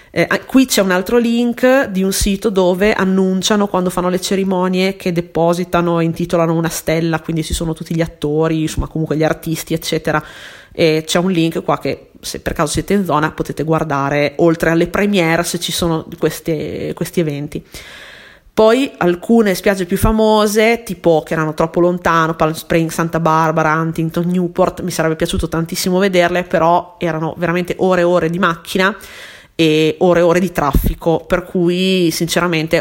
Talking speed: 170 wpm